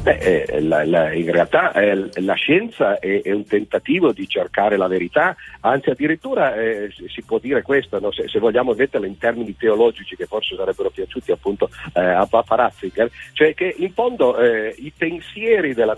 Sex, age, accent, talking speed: male, 50-69, native, 175 wpm